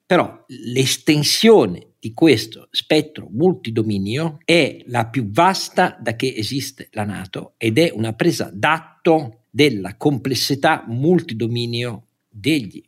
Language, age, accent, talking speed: Italian, 50-69, native, 110 wpm